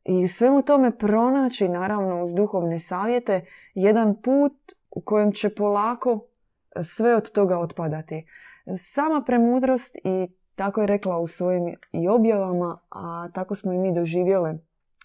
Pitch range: 175-220 Hz